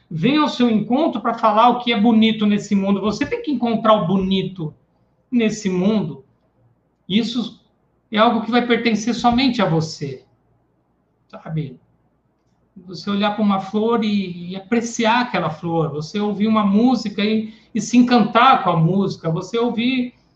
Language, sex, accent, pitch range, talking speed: Portuguese, male, Brazilian, 155-220 Hz, 155 wpm